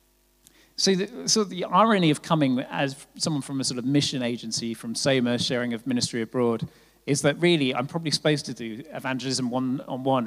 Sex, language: male, English